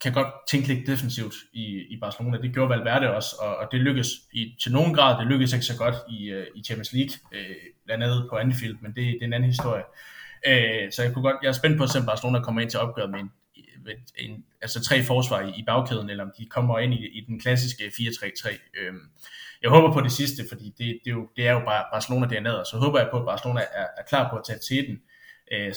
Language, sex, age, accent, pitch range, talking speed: Danish, male, 20-39, native, 115-130 Hz, 240 wpm